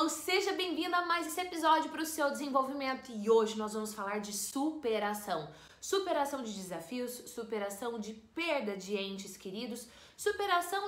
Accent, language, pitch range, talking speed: Brazilian, Portuguese, 210-300 Hz, 155 wpm